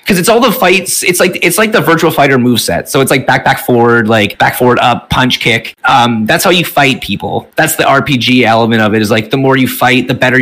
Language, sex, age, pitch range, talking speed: English, male, 30-49, 125-150 Hz, 265 wpm